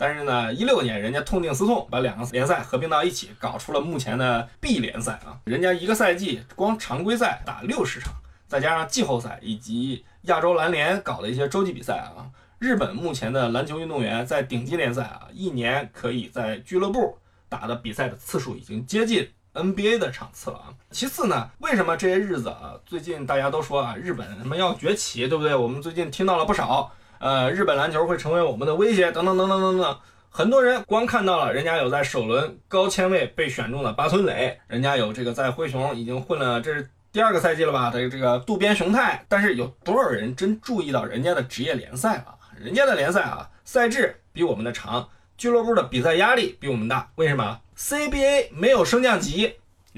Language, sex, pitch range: Chinese, male, 120-200 Hz